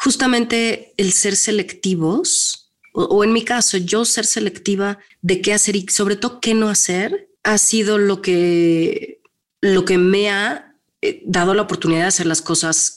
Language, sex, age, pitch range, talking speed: Spanish, female, 30-49, 155-210 Hz, 165 wpm